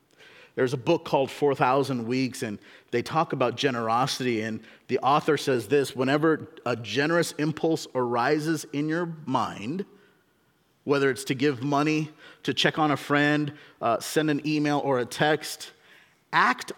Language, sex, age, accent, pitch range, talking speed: English, male, 40-59, American, 140-175 Hz, 150 wpm